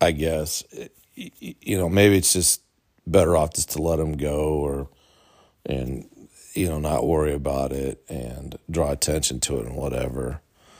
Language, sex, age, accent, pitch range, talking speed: English, male, 40-59, American, 75-95 Hz, 160 wpm